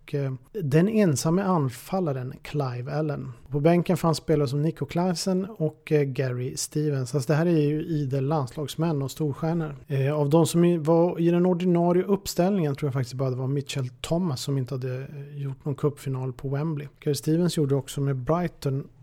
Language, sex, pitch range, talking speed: Swedish, male, 140-175 Hz, 170 wpm